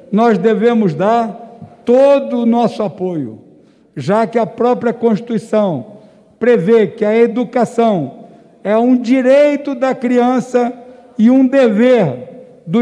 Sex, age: male, 60-79